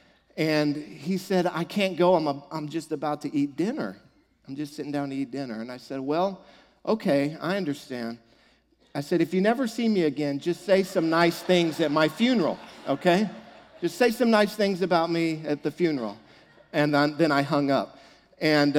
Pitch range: 135-180 Hz